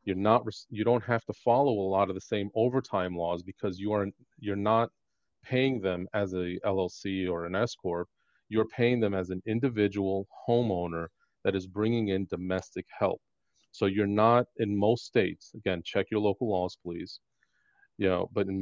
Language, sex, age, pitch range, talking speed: English, male, 30-49, 95-110 Hz, 180 wpm